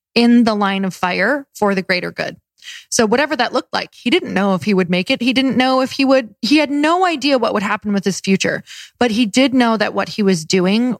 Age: 20-39